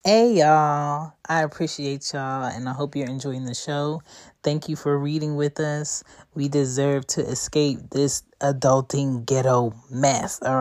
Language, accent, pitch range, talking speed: English, American, 130-155 Hz, 155 wpm